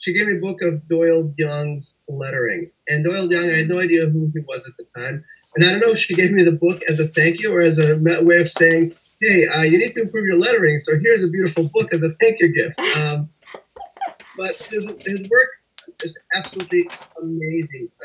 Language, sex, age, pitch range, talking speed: English, male, 30-49, 145-175 Hz, 225 wpm